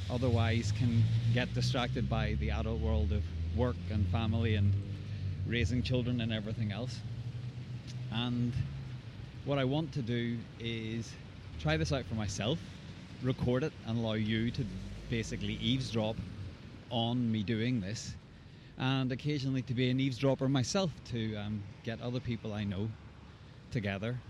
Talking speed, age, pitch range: 140 wpm, 30-49, 105-125 Hz